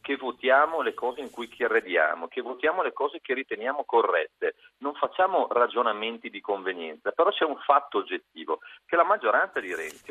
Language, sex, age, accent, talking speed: Italian, male, 40-59, native, 170 wpm